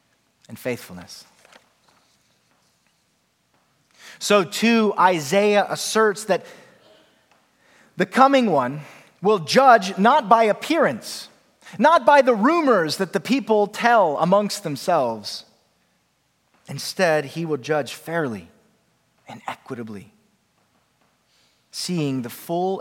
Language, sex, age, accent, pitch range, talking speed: English, male, 30-49, American, 145-220 Hz, 90 wpm